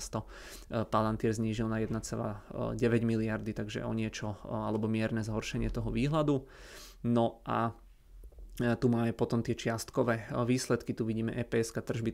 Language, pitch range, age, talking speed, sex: Czech, 110-120 Hz, 20-39, 125 wpm, male